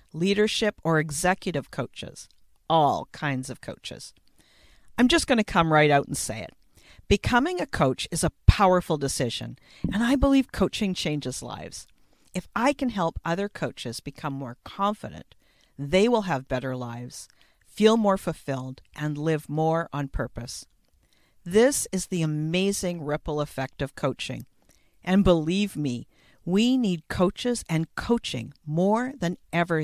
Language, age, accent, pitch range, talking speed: English, 50-69, American, 140-215 Hz, 145 wpm